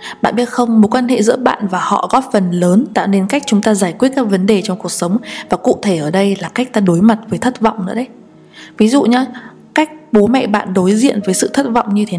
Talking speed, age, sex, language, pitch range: 275 wpm, 20-39, female, Vietnamese, 190-240 Hz